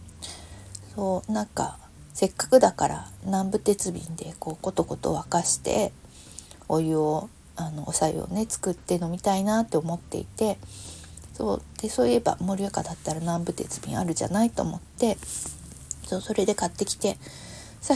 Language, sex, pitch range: Japanese, female, 155-190 Hz